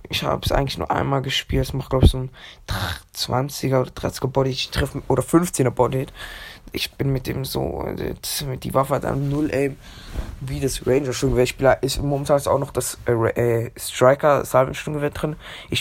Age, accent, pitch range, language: 20-39, German, 115-135 Hz, German